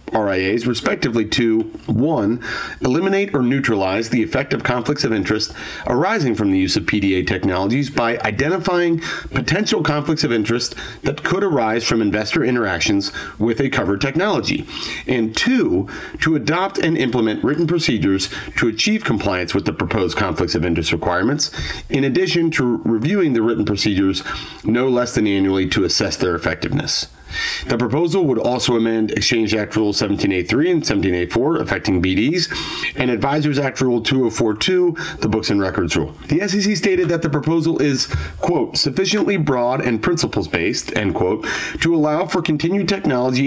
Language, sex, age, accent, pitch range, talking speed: English, male, 40-59, American, 110-155 Hz, 155 wpm